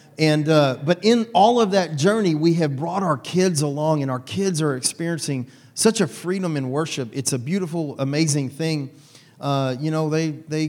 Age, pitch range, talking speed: 40-59, 140-165 Hz, 190 wpm